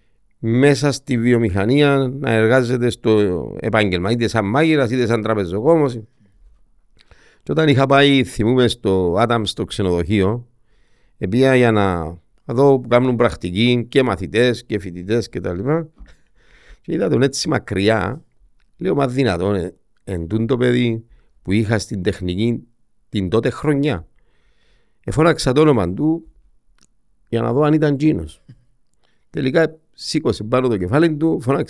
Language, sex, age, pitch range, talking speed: Greek, male, 50-69, 100-135 Hz, 130 wpm